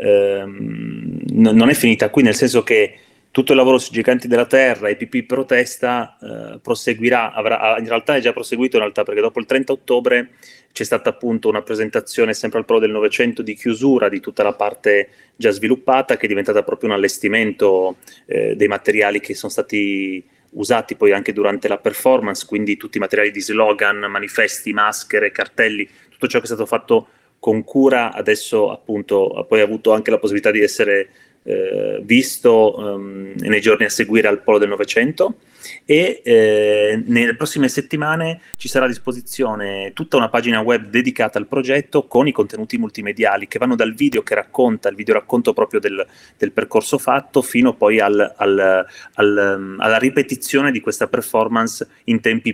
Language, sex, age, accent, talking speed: Italian, male, 30-49, native, 170 wpm